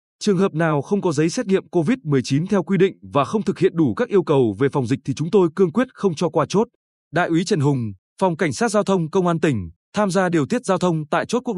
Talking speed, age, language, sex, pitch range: 275 wpm, 20-39, Vietnamese, male, 150-200 Hz